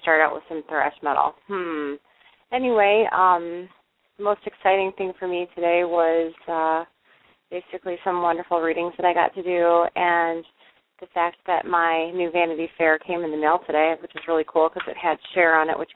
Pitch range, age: 165-185 Hz, 30-49